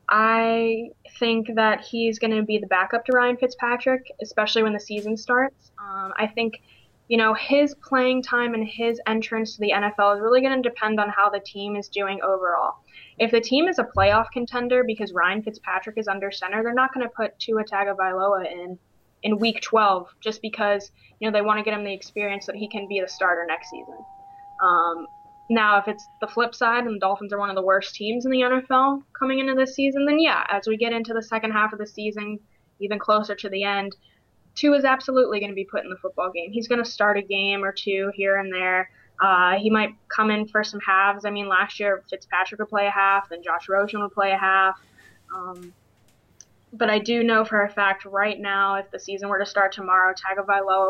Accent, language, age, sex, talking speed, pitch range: American, English, 10-29, female, 225 wpm, 195-230 Hz